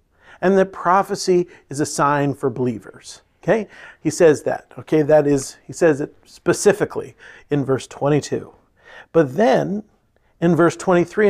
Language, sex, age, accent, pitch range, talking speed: English, male, 40-59, American, 165-215 Hz, 145 wpm